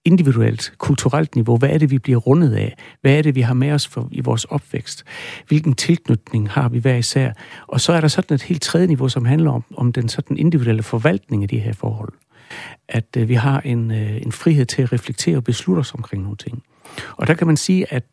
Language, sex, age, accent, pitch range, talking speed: Danish, male, 60-79, native, 120-150 Hz, 235 wpm